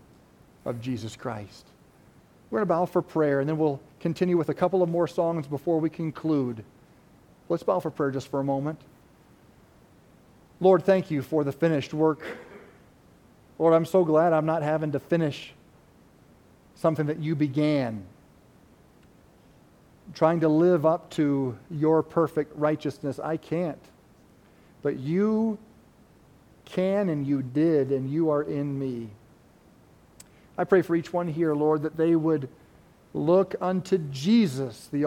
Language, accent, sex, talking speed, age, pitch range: English, American, male, 145 wpm, 40-59, 140-170 Hz